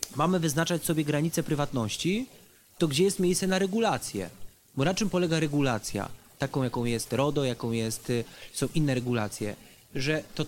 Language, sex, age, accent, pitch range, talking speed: Polish, male, 30-49, native, 140-185 Hz, 155 wpm